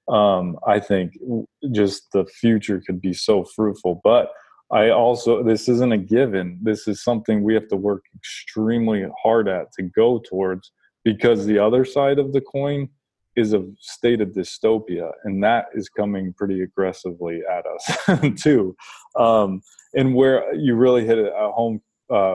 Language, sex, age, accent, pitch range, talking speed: English, male, 20-39, American, 95-110 Hz, 165 wpm